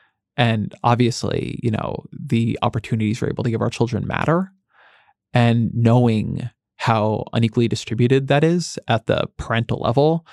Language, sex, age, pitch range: English, male, 20-39, 115-130 Hz